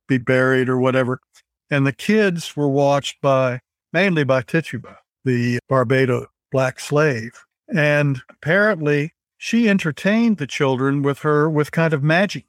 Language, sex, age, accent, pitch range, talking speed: English, male, 60-79, American, 130-160 Hz, 140 wpm